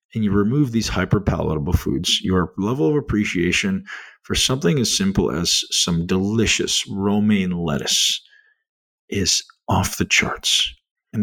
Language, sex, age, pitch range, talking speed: English, male, 50-69, 90-150 Hz, 135 wpm